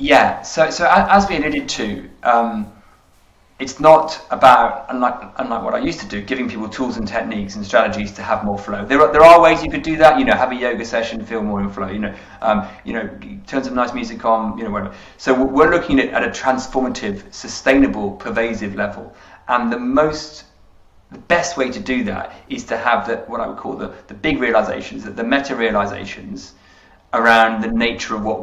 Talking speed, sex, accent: 210 wpm, male, British